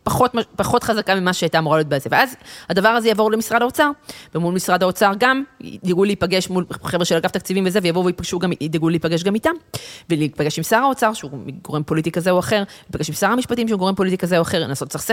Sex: female